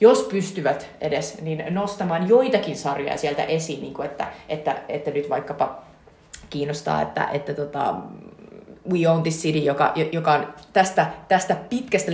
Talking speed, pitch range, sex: 145 wpm, 150-195 Hz, female